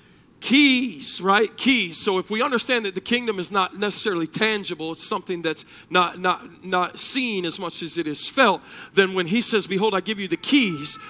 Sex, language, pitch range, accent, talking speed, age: male, English, 220-285 Hz, American, 200 wpm, 40-59